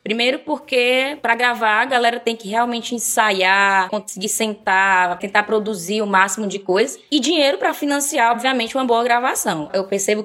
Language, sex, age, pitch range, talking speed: Portuguese, female, 10-29, 190-235 Hz, 165 wpm